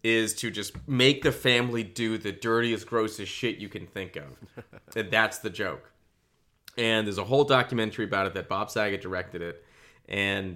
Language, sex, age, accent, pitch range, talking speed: English, male, 30-49, American, 95-125 Hz, 180 wpm